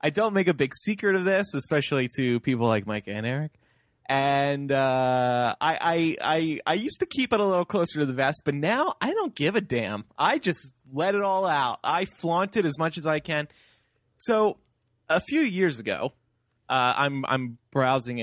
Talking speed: 200 wpm